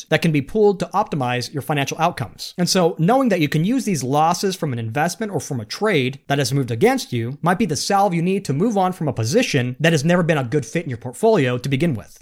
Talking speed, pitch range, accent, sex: 270 wpm, 140-200 Hz, American, male